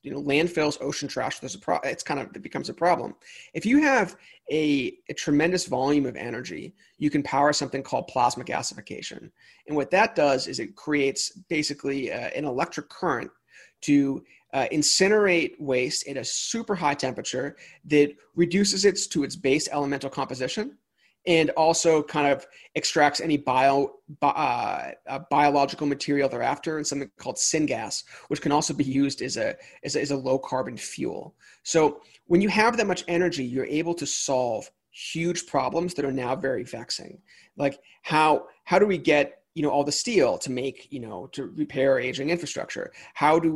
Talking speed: 180 wpm